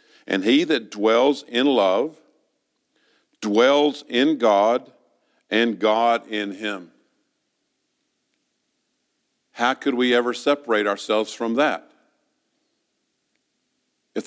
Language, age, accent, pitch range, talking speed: English, 50-69, American, 110-135 Hz, 95 wpm